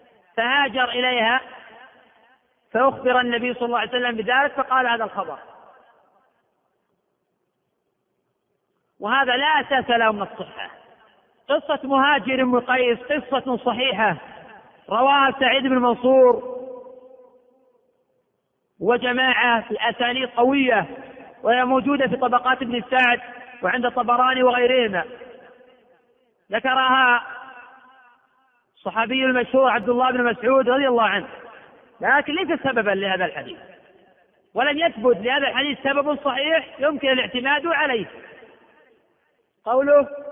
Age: 40-59